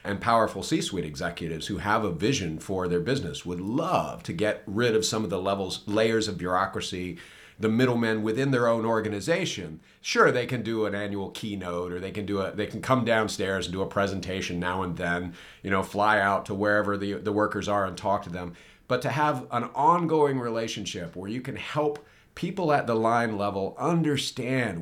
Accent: American